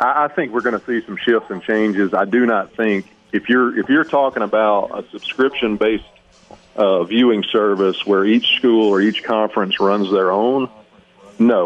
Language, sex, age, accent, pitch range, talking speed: English, male, 40-59, American, 95-115 Hz, 180 wpm